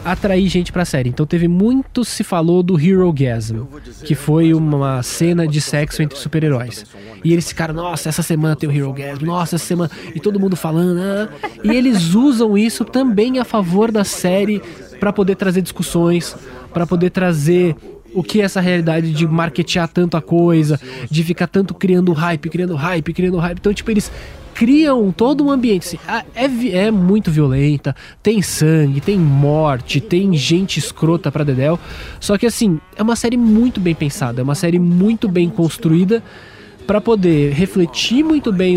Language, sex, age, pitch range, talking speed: English, male, 20-39, 155-195 Hz, 175 wpm